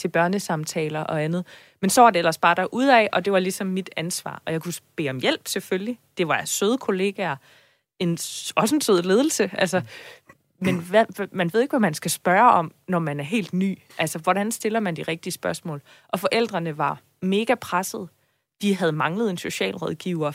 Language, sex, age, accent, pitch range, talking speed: Danish, female, 20-39, native, 160-200 Hz, 185 wpm